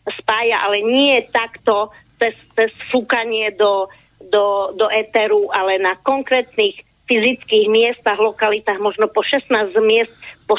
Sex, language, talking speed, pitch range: female, Slovak, 125 wpm, 210-260 Hz